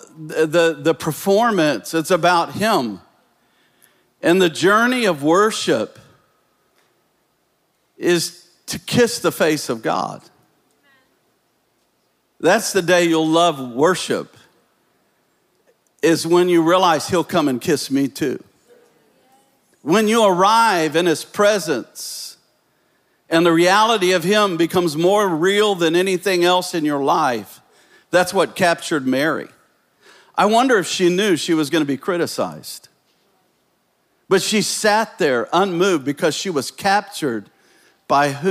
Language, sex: English, male